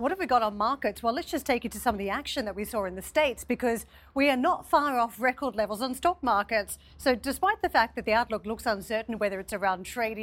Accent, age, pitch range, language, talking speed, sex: Australian, 40-59, 210-250 Hz, English, 270 wpm, female